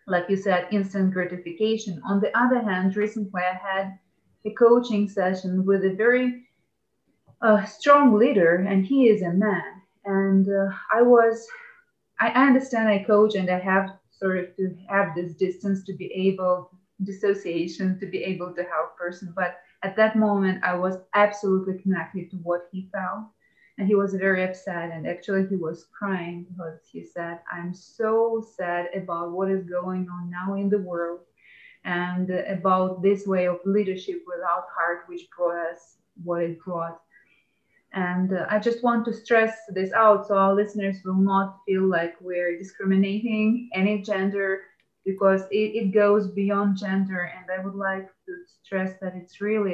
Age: 30-49